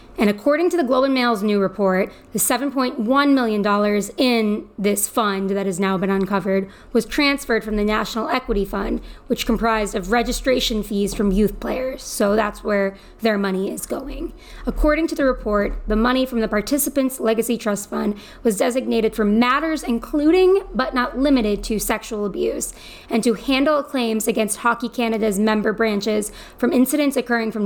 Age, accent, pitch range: 20-39, American, 210-255 Hz